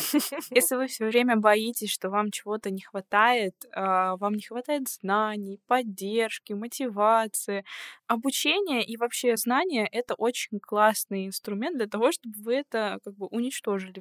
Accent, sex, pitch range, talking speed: native, female, 205-265 Hz, 140 wpm